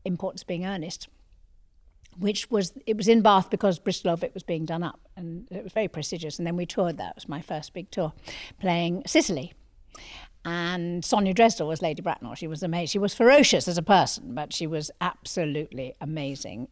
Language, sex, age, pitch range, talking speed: English, female, 60-79, 165-200 Hz, 195 wpm